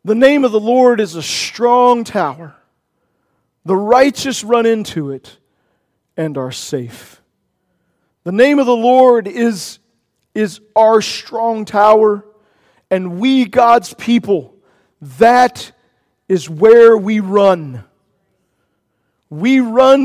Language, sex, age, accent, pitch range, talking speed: English, male, 40-59, American, 165-240 Hz, 115 wpm